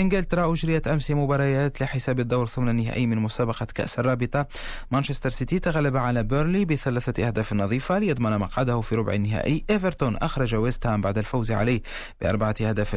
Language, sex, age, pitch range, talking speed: Arabic, male, 30-49, 115-150 Hz, 155 wpm